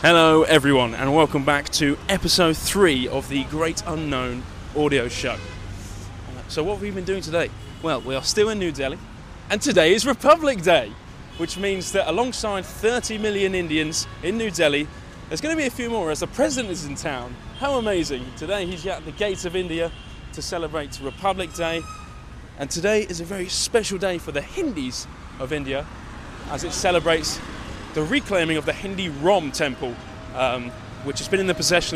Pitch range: 125-185 Hz